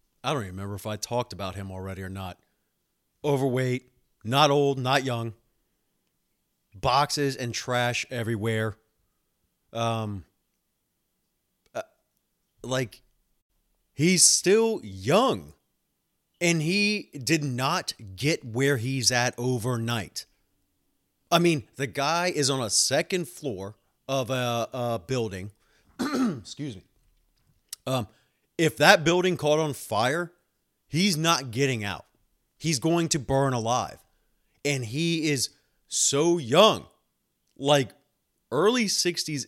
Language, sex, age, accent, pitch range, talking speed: English, male, 30-49, American, 115-170 Hz, 115 wpm